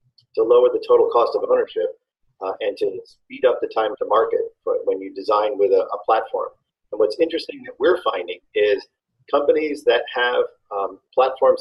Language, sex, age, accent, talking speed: English, male, 40-59, American, 185 wpm